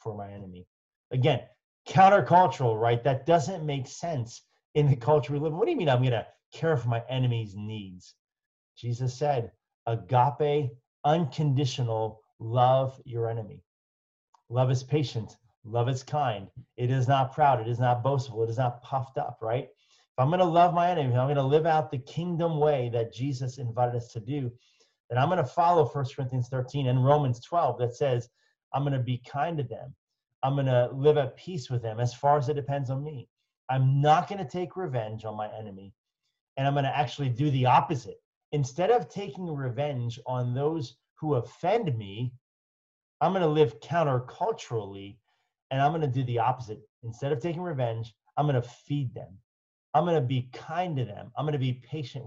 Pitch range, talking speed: 120-150 Hz, 195 wpm